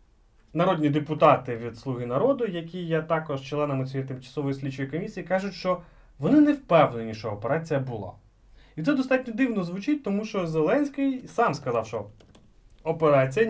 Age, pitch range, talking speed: 30-49, 130-195 Hz, 145 wpm